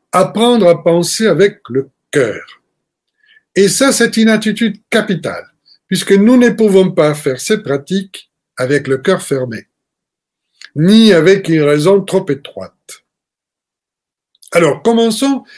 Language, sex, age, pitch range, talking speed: French, male, 60-79, 160-210 Hz, 125 wpm